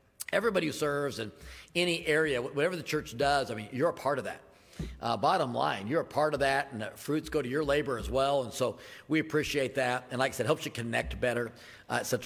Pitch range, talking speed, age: 125-155 Hz, 240 wpm, 50-69